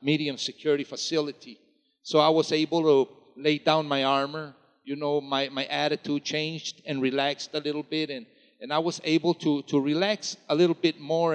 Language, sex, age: English, male, 50-69